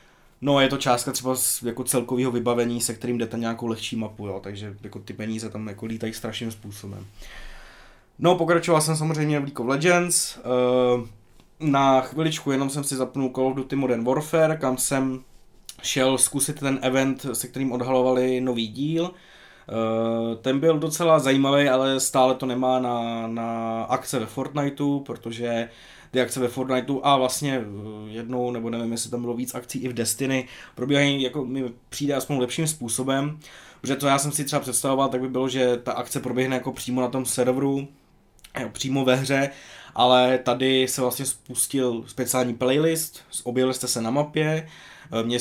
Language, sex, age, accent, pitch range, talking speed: Czech, male, 20-39, native, 120-135 Hz, 165 wpm